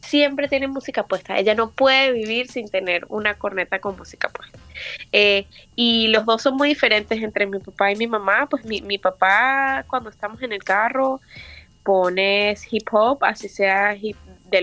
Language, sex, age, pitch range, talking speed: Spanish, female, 20-39, 185-225 Hz, 180 wpm